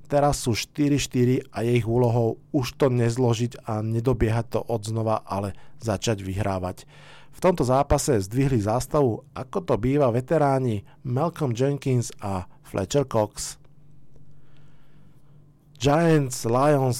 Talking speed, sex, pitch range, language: 115 wpm, male, 115-145 Hz, Slovak